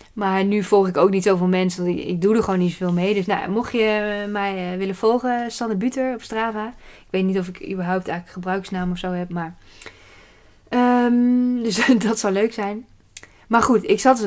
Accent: Dutch